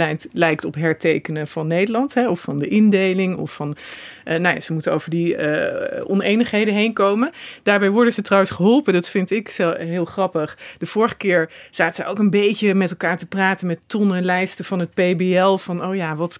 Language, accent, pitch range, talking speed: Dutch, Dutch, 175-220 Hz, 210 wpm